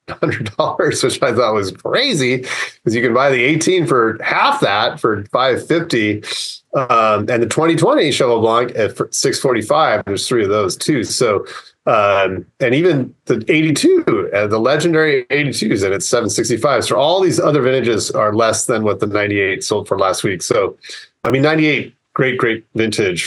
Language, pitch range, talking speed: English, 105-135 Hz, 175 wpm